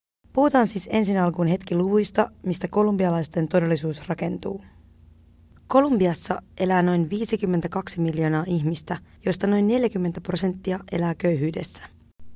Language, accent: Finnish, native